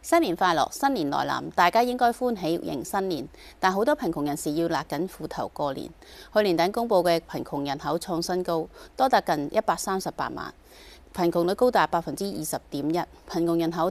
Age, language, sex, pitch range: 30-49, Chinese, female, 155-215 Hz